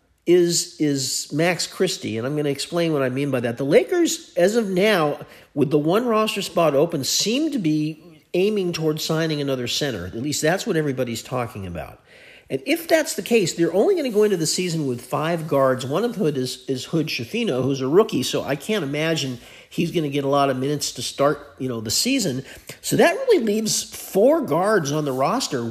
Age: 50-69